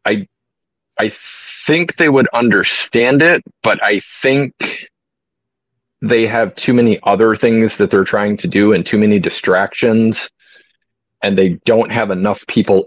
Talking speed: 145 wpm